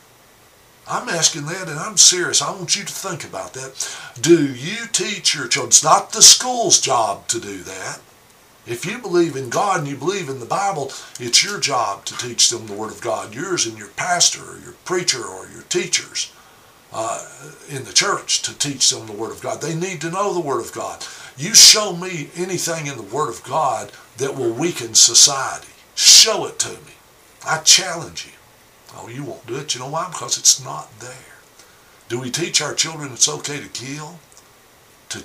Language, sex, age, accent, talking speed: English, male, 60-79, American, 200 wpm